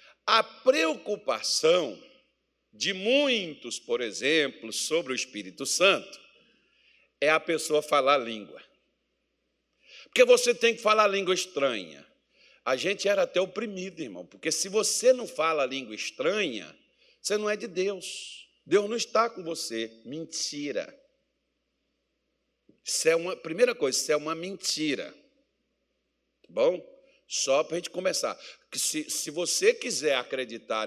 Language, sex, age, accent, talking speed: Portuguese, male, 60-79, Brazilian, 135 wpm